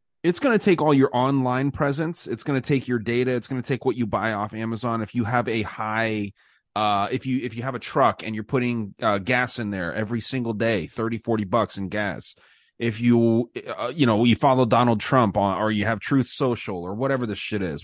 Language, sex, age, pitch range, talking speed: English, male, 30-49, 110-125 Hz, 240 wpm